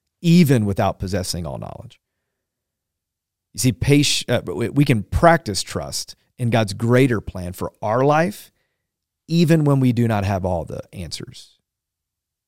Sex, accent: male, American